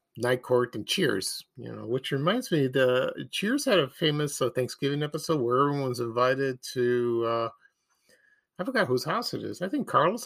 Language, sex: English, male